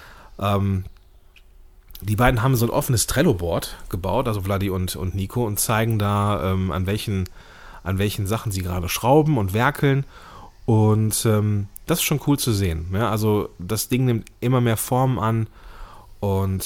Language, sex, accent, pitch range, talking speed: German, male, German, 95-115 Hz, 160 wpm